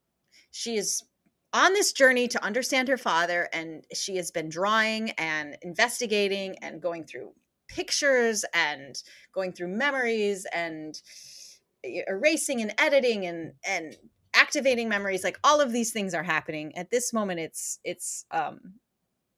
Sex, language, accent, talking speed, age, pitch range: female, English, American, 140 wpm, 30-49, 170-225 Hz